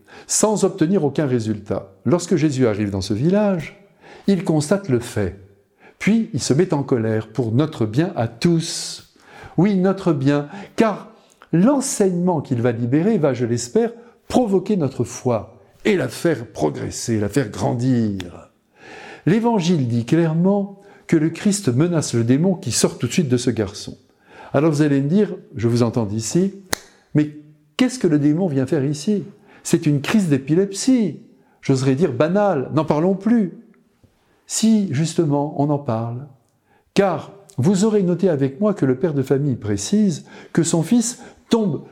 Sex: male